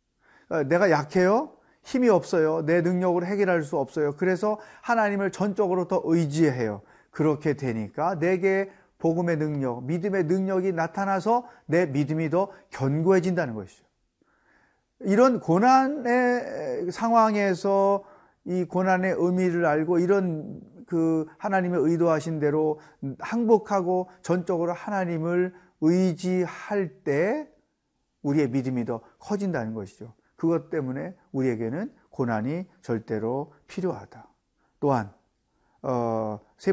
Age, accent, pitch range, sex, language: 40-59, native, 145-190 Hz, male, Korean